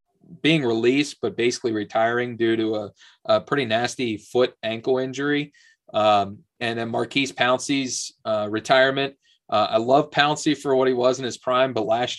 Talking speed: 165 wpm